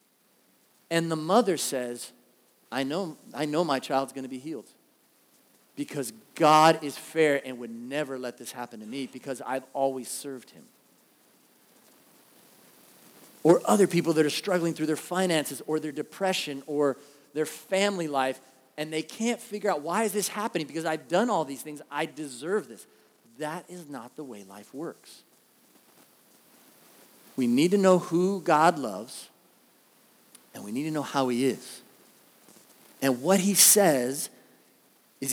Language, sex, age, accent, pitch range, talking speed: English, male, 40-59, American, 140-190 Hz, 155 wpm